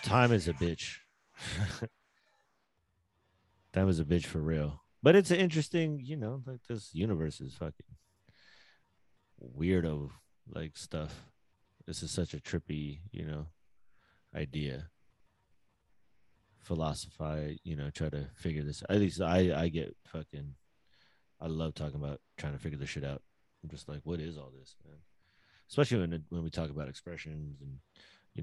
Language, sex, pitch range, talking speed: English, male, 75-90 Hz, 155 wpm